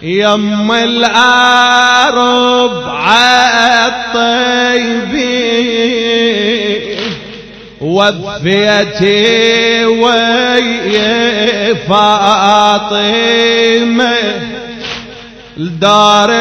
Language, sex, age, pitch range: Arabic, male, 30-49, 205-235 Hz